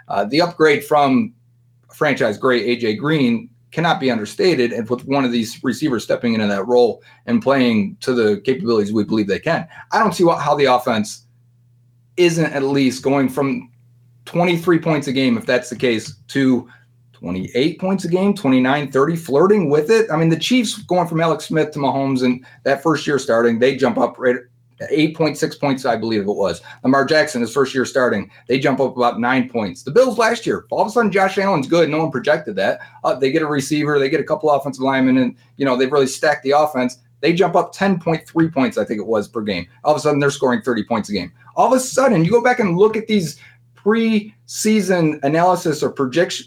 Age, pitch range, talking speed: 30-49, 125-175 Hz, 215 wpm